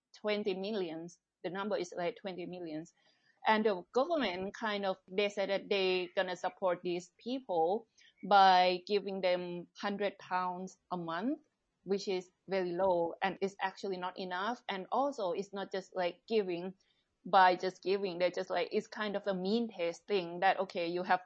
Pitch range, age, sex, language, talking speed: 175-205 Hz, 20-39, female, English, 175 wpm